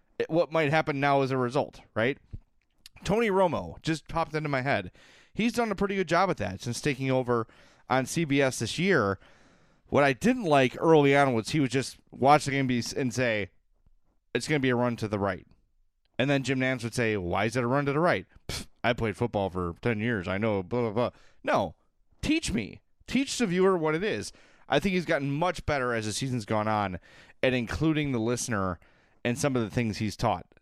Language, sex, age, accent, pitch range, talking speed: English, male, 30-49, American, 105-140 Hz, 220 wpm